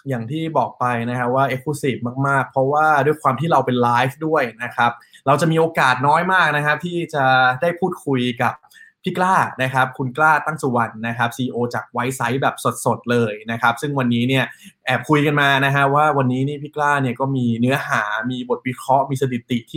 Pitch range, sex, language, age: 120-145 Hz, male, Thai, 20-39